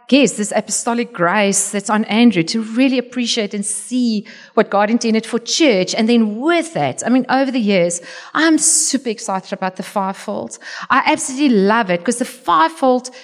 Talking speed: 175 wpm